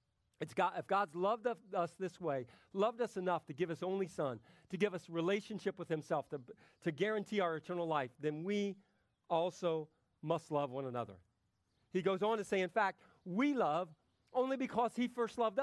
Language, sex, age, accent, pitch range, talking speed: English, male, 40-59, American, 140-205 Hz, 180 wpm